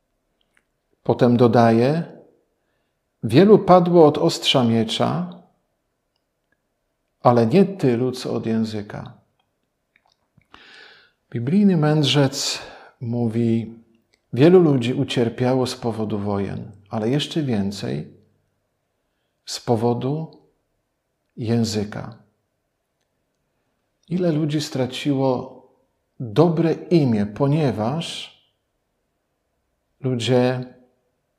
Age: 50-69